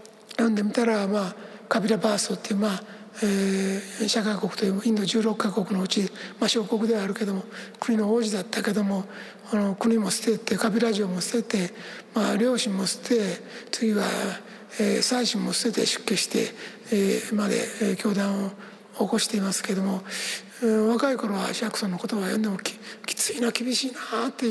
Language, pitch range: Japanese, 205-230 Hz